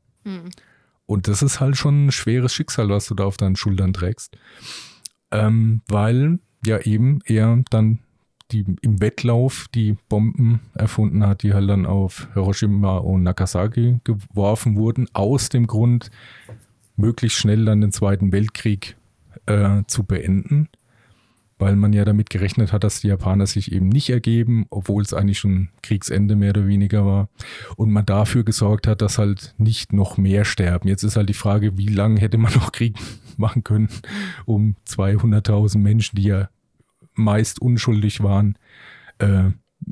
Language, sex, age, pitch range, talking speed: German, male, 40-59, 100-115 Hz, 155 wpm